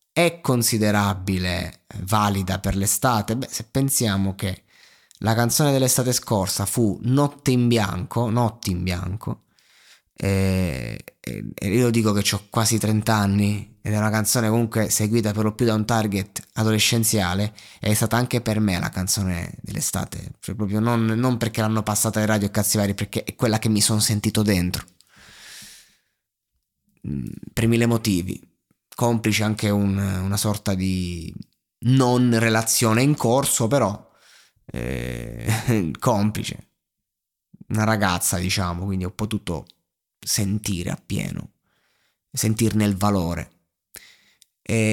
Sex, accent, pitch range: male, native, 95-115 Hz